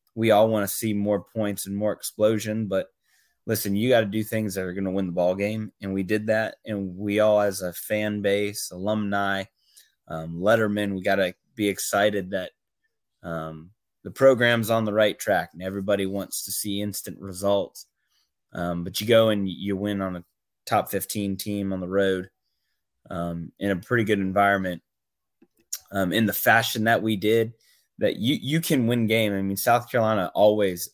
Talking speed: 190 wpm